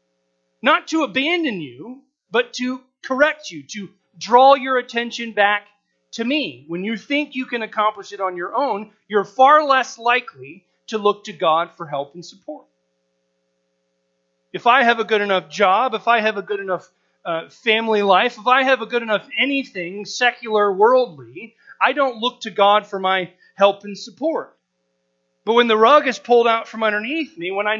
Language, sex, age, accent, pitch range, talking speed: English, male, 30-49, American, 165-235 Hz, 180 wpm